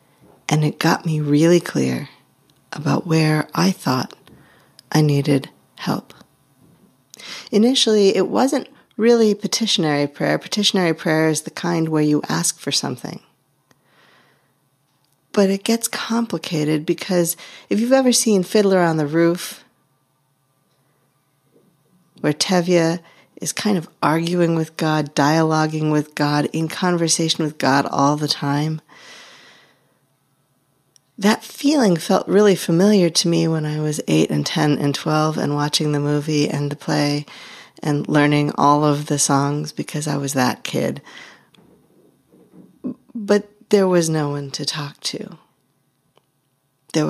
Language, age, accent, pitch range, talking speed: English, 40-59, American, 145-185 Hz, 130 wpm